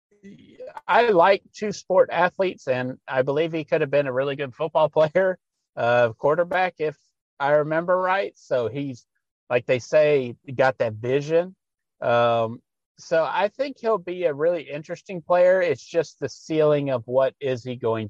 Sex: male